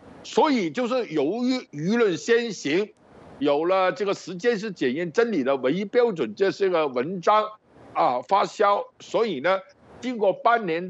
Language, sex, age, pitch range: Chinese, male, 60-79, 170-235 Hz